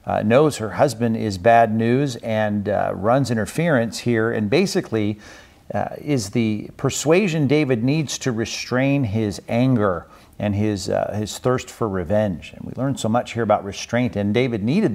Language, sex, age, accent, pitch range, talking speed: English, male, 50-69, American, 105-125 Hz, 170 wpm